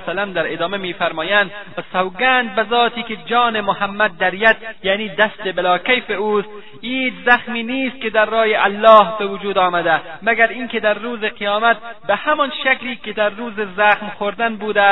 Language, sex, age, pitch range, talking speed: Persian, male, 30-49, 195-235 Hz, 165 wpm